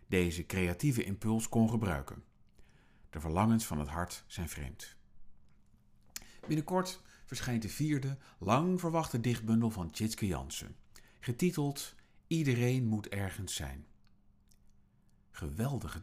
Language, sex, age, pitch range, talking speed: Dutch, male, 50-69, 90-125 Hz, 105 wpm